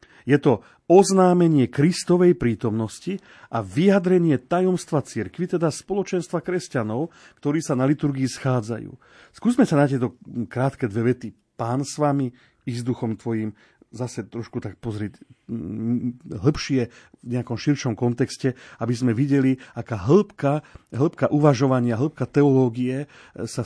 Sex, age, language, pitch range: male, 40-59, Slovak, 115-145 Hz